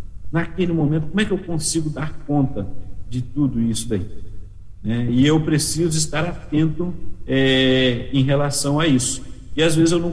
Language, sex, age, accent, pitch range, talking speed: Portuguese, male, 50-69, Brazilian, 135-170 Hz, 170 wpm